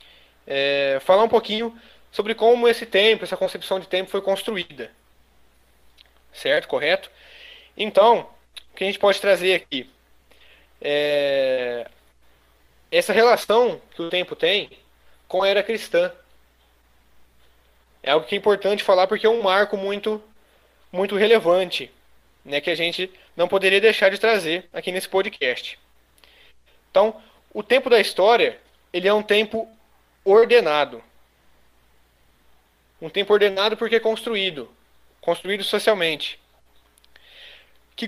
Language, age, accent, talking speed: Portuguese, 20-39, Brazilian, 125 wpm